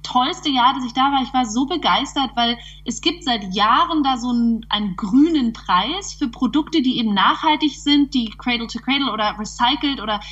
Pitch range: 230-290 Hz